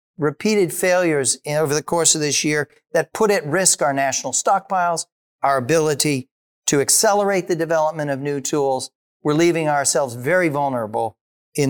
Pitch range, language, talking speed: 135-180 Hz, English, 155 wpm